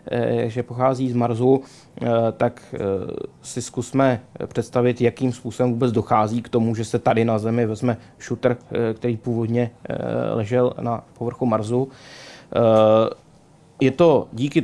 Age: 20-39